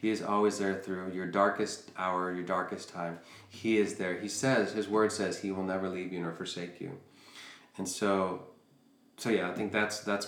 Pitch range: 90-110 Hz